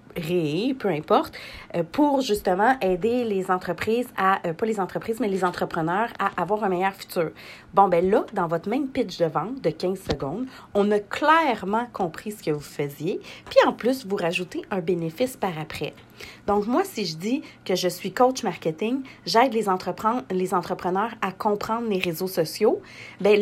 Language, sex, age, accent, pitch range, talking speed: French, female, 40-59, Canadian, 175-250 Hz, 175 wpm